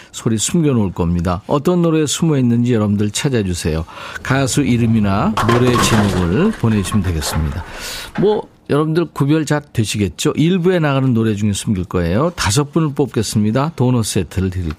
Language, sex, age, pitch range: Korean, male, 50-69, 100-145 Hz